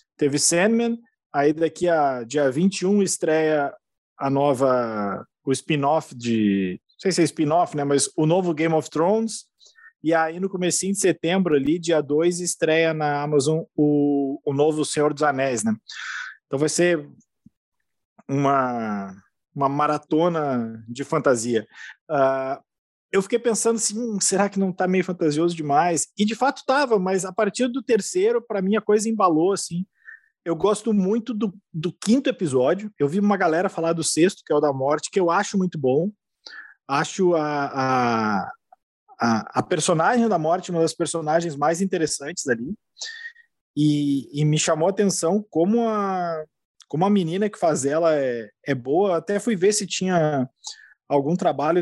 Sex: male